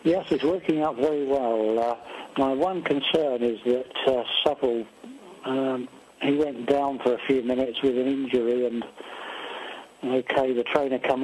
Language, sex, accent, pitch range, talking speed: English, male, British, 130-160 Hz, 160 wpm